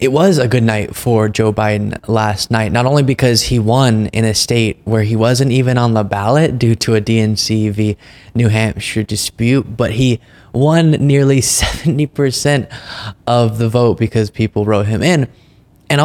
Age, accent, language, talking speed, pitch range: 20-39, American, English, 175 wpm, 105-125 Hz